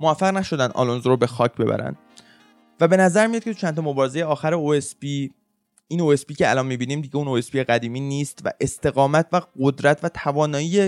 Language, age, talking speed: Persian, 20-39, 190 wpm